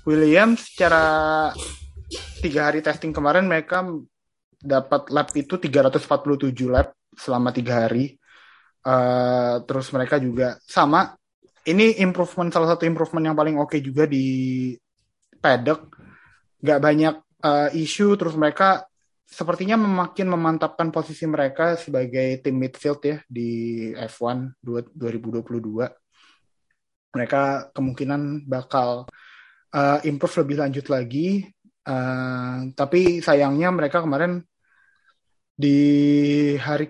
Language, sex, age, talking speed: Indonesian, male, 20-39, 105 wpm